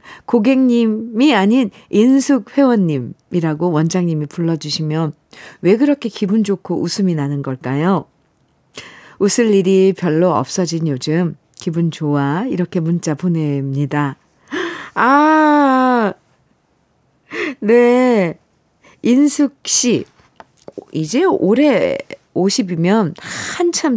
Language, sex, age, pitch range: Korean, female, 50-69, 165-230 Hz